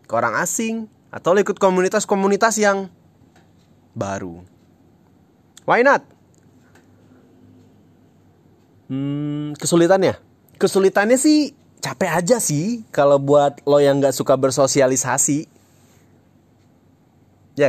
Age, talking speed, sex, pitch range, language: 20-39, 85 wpm, male, 105-160 Hz, Indonesian